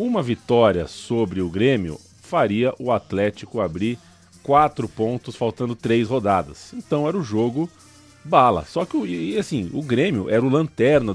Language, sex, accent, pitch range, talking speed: Portuguese, male, Brazilian, 95-130 Hz, 145 wpm